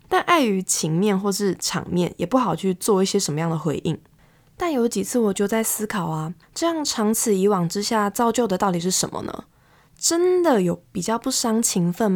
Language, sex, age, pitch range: Chinese, female, 20-39, 175-235 Hz